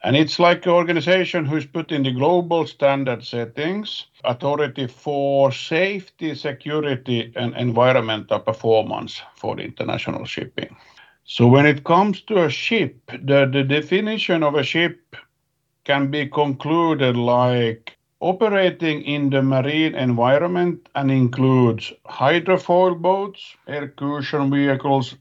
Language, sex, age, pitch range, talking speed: English, male, 50-69, 130-160 Hz, 120 wpm